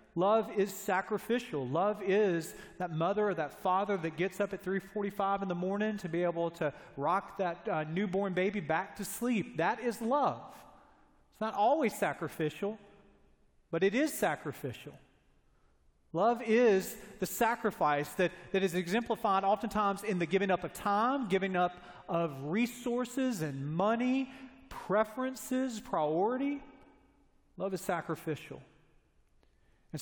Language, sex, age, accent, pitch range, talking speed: English, male, 40-59, American, 170-215 Hz, 135 wpm